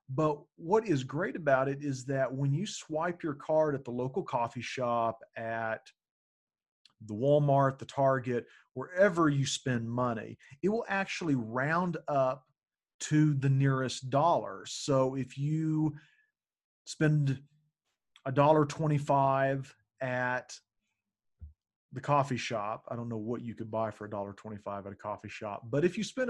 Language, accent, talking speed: English, American, 150 wpm